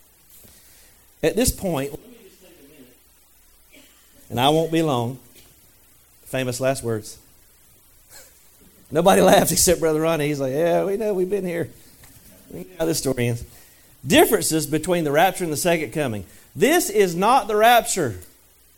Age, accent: 40-59, American